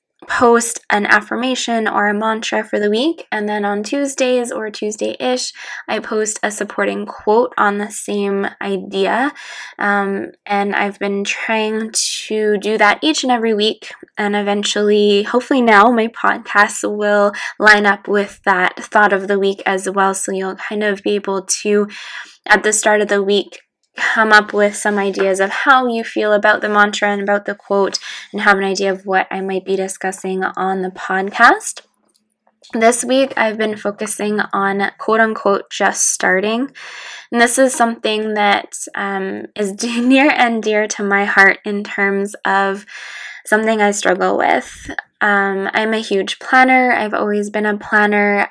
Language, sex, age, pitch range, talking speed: English, female, 10-29, 200-225 Hz, 165 wpm